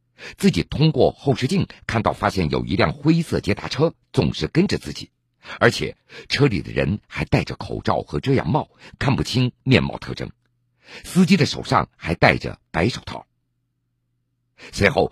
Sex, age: male, 50-69